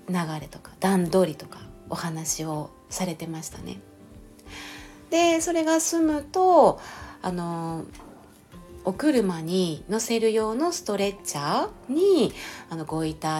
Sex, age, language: female, 30-49, Japanese